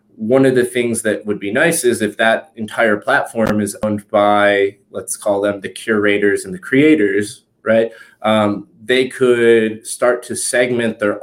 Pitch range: 105-125 Hz